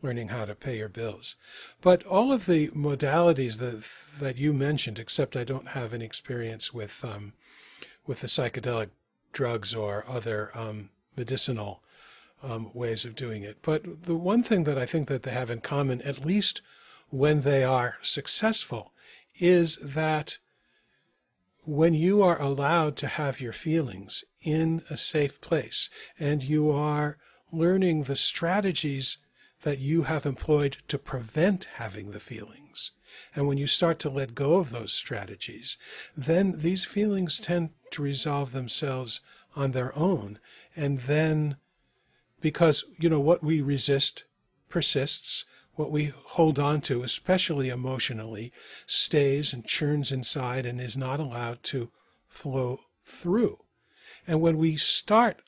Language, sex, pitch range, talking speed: English, male, 125-160 Hz, 145 wpm